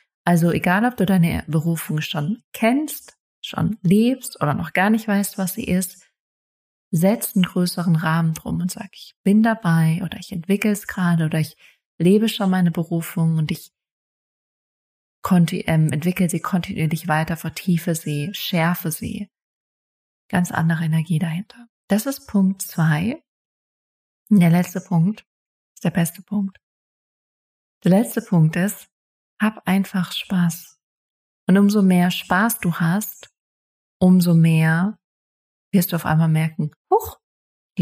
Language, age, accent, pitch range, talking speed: German, 30-49, German, 165-200 Hz, 140 wpm